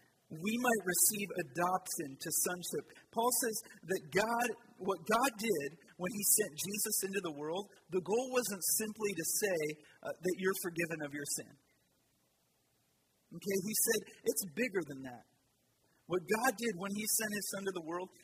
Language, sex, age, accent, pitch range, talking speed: English, male, 40-59, American, 155-195 Hz, 170 wpm